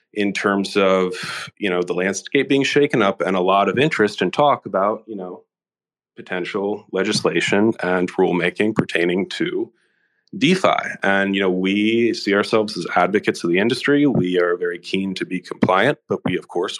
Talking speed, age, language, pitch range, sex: 175 wpm, 30-49, English, 95-115 Hz, male